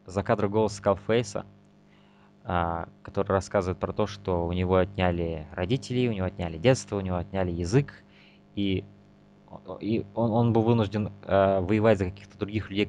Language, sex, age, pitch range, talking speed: Russian, male, 20-39, 90-105 Hz, 145 wpm